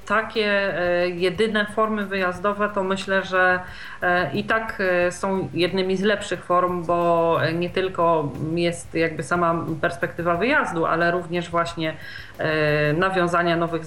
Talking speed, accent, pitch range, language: 115 wpm, native, 170-205 Hz, Polish